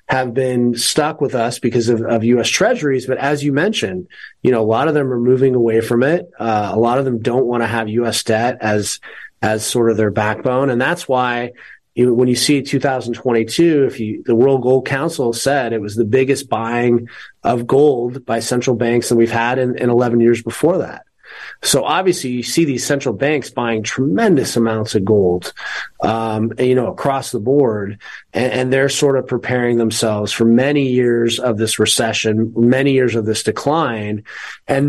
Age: 30-49